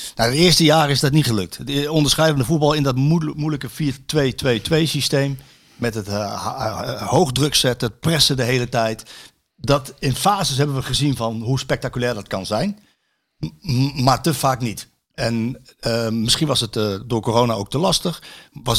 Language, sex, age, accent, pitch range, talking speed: Dutch, male, 60-79, Dutch, 125-165 Hz, 165 wpm